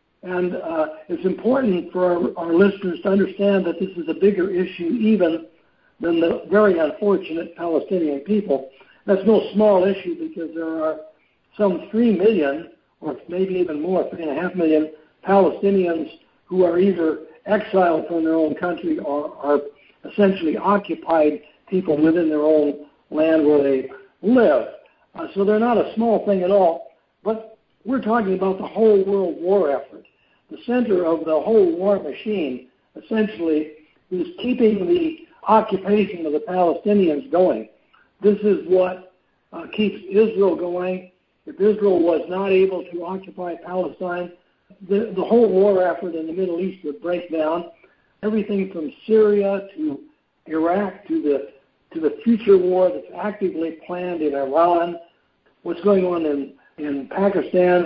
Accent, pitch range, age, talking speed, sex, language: American, 165-205 Hz, 60-79, 145 wpm, male, English